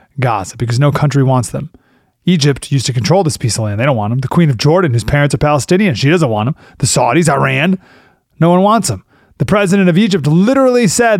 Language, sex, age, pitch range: English, male, 30-49, 125-175 Hz